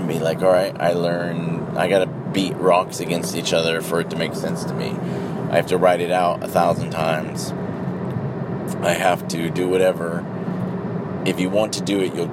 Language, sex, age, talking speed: English, male, 20-39, 190 wpm